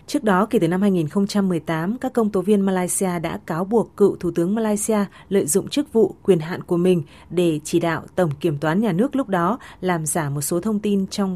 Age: 20-39